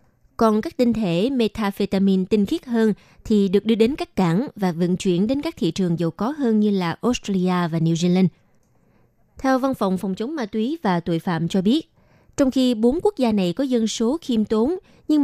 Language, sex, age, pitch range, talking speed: Vietnamese, female, 20-39, 185-240 Hz, 215 wpm